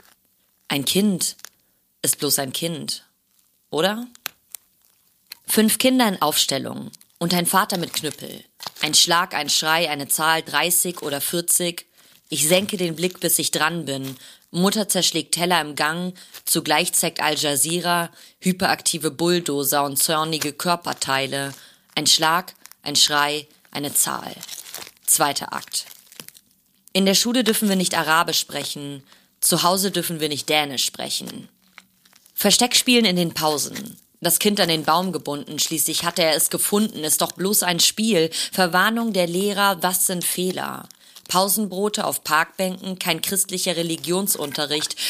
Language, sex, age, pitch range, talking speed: German, female, 30-49, 150-185 Hz, 135 wpm